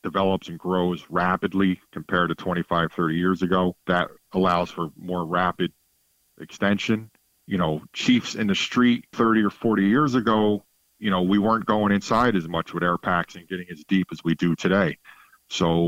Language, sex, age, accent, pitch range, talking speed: English, male, 40-59, American, 85-100 Hz, 180 wpm